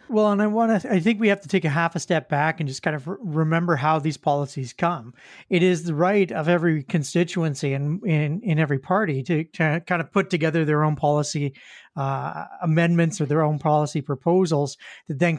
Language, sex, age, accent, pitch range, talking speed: English, male, 40-59, American, 150-180 Hz, 220 wpm